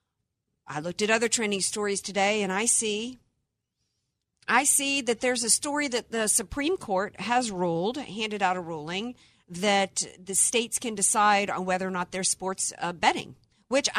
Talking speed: 170 wpm